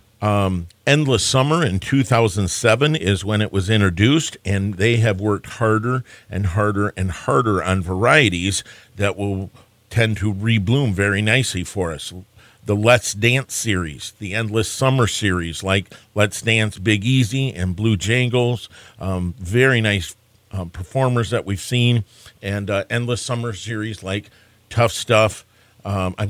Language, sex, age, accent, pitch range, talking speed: English, male, 50-69, American, 100-125 Hz, 145 wpm